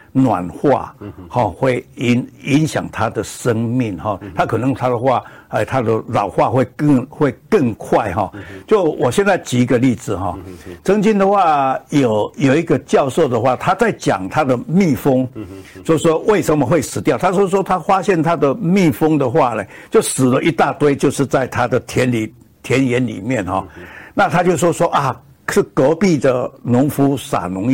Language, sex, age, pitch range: Chinese, male, 60-79, 115-160 Hz